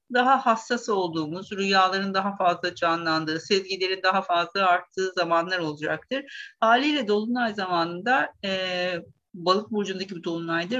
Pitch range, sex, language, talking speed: 185-235 Hz, female, Turkish, 115 wpm